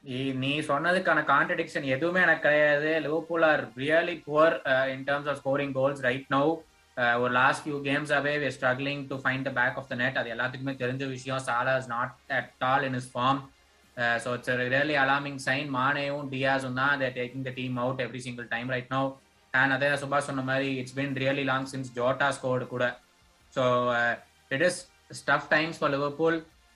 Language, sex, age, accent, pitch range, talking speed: Tamil, male, 20-39, native, 130-150 Hz, 50 wpm